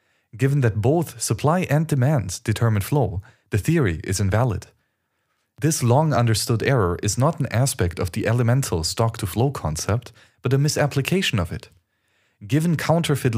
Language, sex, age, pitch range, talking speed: English, male, 30-49, 105-140 Hz, 140 wpm